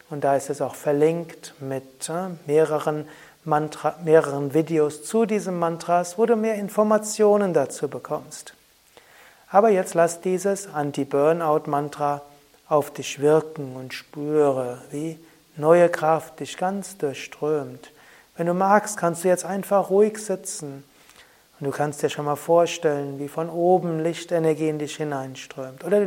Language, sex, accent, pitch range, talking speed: German, male, German, 145-175 Hz, 135 wpm